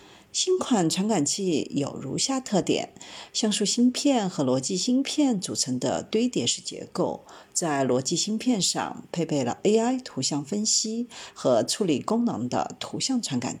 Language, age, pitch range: Chinese, 50-69, 165-240 Hz